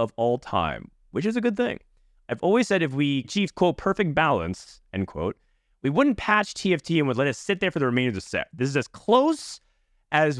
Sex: male